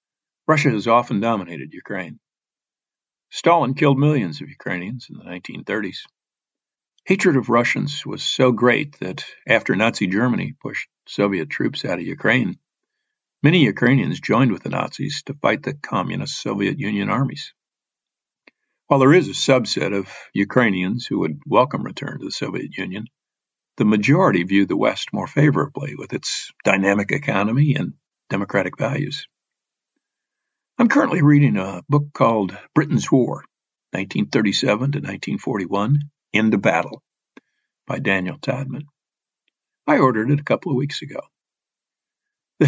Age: 50-69